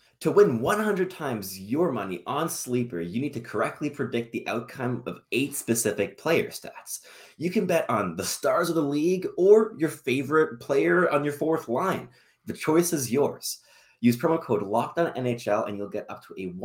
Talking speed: 185 wpm